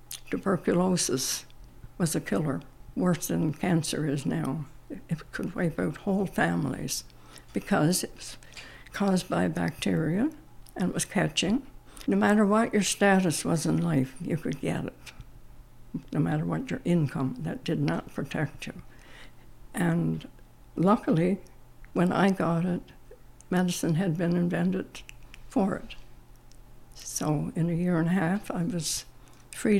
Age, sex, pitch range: 60-79, female, 150-195 Hz